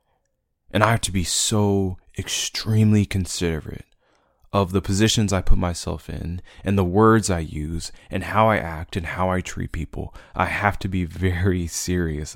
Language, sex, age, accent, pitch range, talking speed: English, male, 20-39, American, 85-100 Hz, 170 wpm